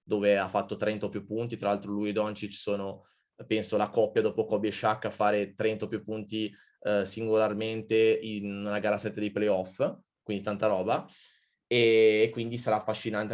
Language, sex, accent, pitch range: Italian, male, native, 105-125 Hz